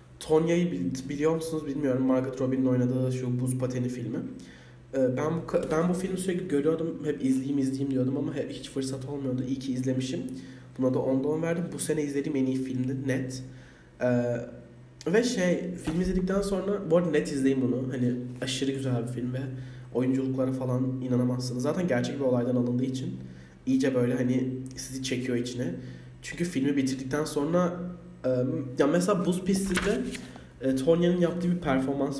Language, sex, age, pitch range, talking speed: Turkish, male, 20-39, 125-155 Hz, 170 wpm